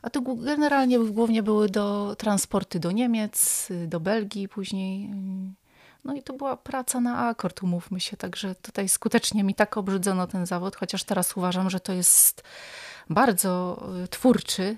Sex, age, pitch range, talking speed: female, 30-49, 180-235 Hz, 150 wpm